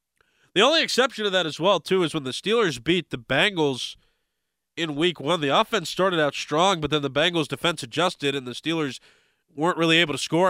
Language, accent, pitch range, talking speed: English, American, 130-170 Hz, 210 wpm